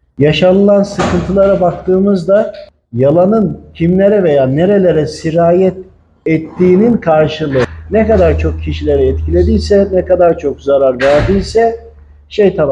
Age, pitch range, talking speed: 50-69, 145-200 Hz, 100 wpm